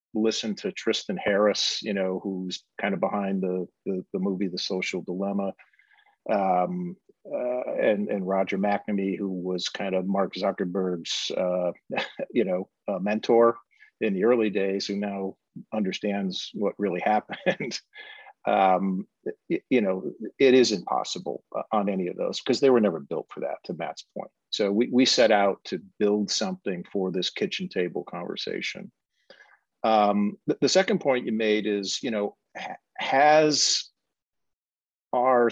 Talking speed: 150 wpm